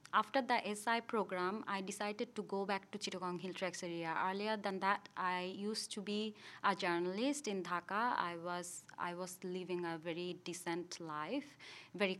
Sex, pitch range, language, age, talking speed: female, 180-210 Hz, English, 30-49, 170 wpm